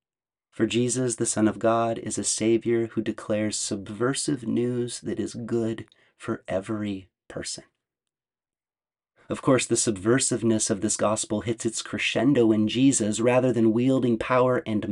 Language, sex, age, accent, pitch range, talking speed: English, male, 30-49, American, 110-125 Hz, 145 wpm